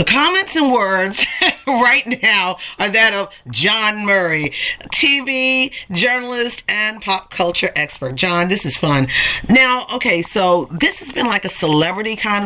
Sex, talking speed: female, 150 wpm